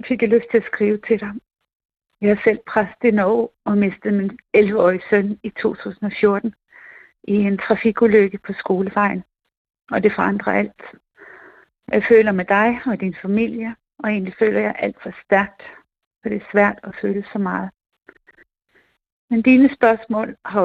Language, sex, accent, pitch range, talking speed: Danish, female, native, 190-225 Hz, 160 wpm